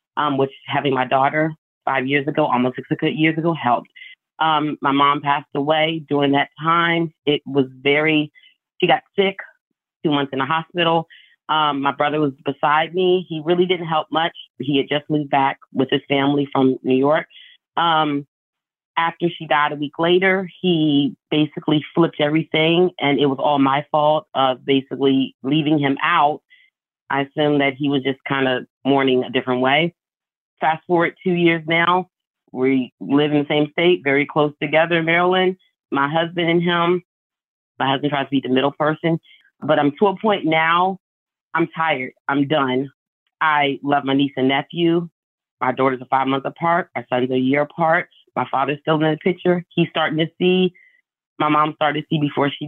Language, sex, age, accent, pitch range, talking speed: English, female, 30-49, American, 140-170 Hz, 180 wpm